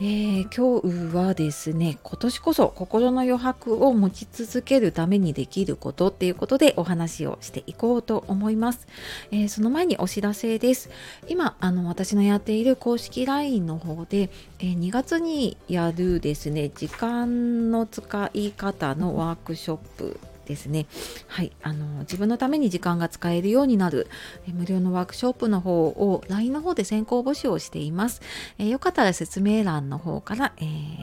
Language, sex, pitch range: Japanese, female, 165-230 Hz